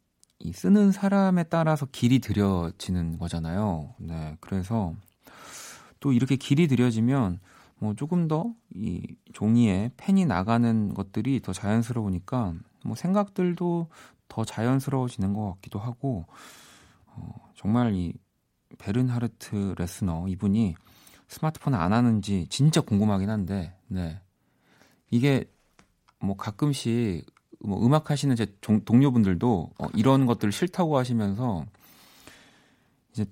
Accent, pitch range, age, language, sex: native, 100-145 Hz, 40-59, Korean, male